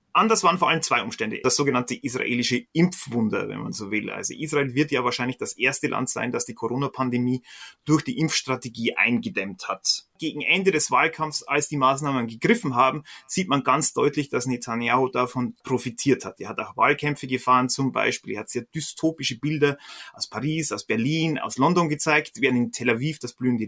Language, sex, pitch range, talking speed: German, male, 130-180 Hz, 190 wpm